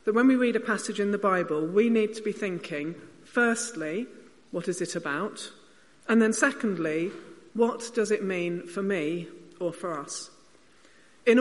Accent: British